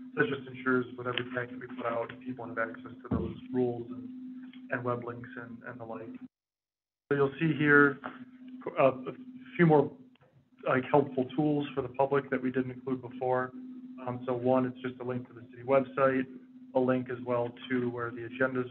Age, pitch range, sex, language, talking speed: 20-39, 125-140 Hz, male, English, 195 wpm